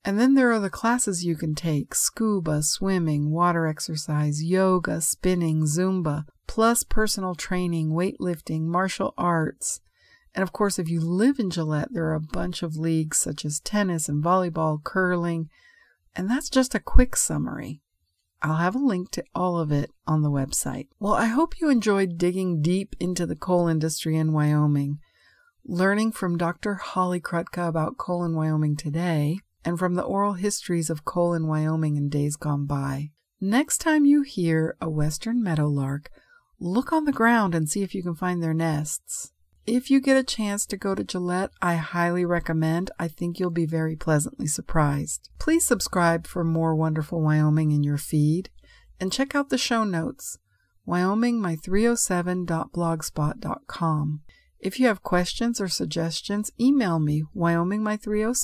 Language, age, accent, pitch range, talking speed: English, 50-69, American, 160-205 Hz, 160 wpm